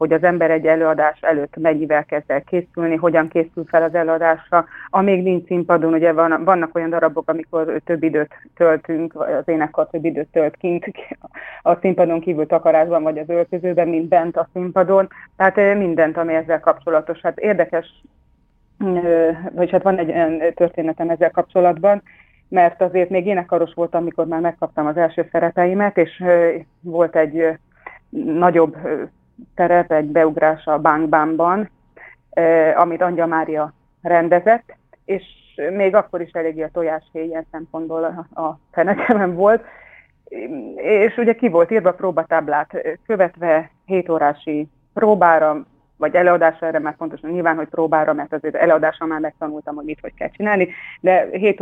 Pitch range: 160-180 Hz